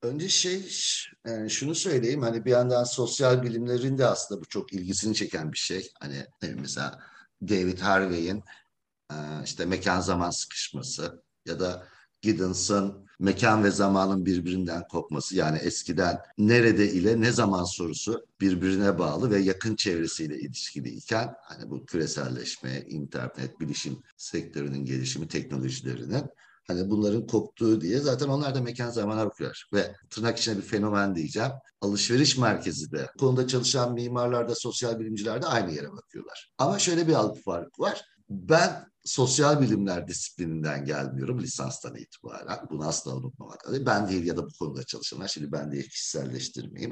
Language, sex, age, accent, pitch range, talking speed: Turkish, male, 60-79, native, 85-125 Hz, 140 wpm